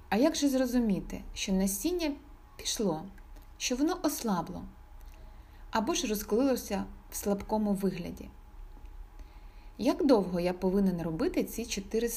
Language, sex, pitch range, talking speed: Ukrainian, female, 155-225 Hz, 115 wpm